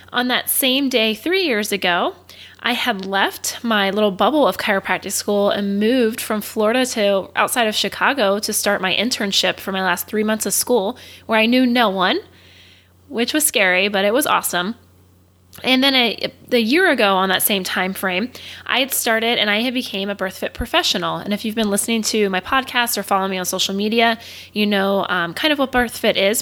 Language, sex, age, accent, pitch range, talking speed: English, female, 20-39, American, 195-245 Hz, 210 wpm